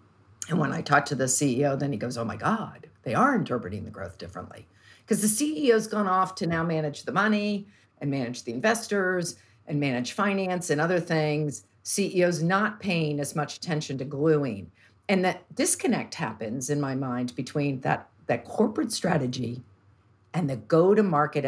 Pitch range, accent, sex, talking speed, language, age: 110-170 Hz, American, female, 175 wpm, English, 50-69